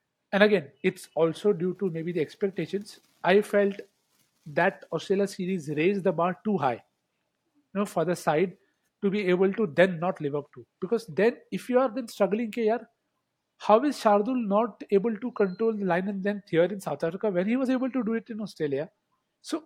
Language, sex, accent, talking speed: English, male, Indian, 200 wpm